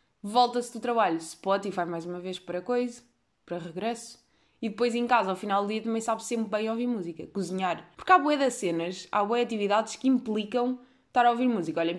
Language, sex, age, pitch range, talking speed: Portuguese, female, 20-39, 185-230 Hz, 205 wpm